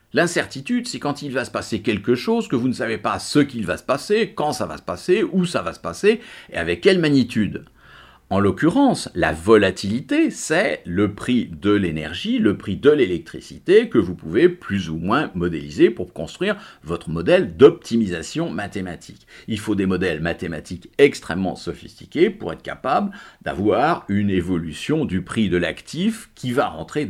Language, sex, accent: English, male, French